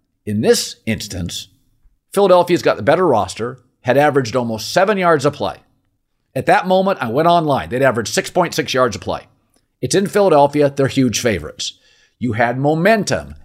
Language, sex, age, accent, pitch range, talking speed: English, male, 50-69, American, 115-180 Hz, 160 wpm